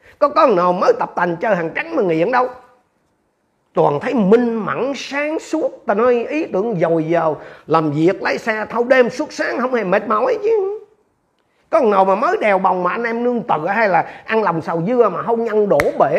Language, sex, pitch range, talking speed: Vietnamese, male, 165-245 Hz, 220 wpm